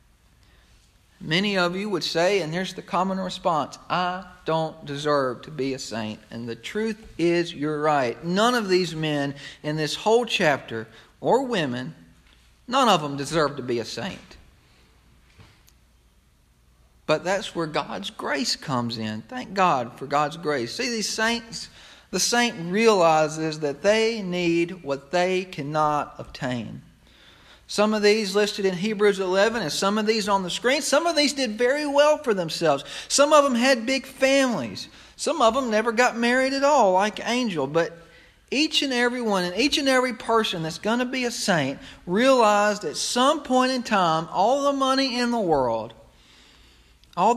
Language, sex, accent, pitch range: English, male, American, 150-240 Hz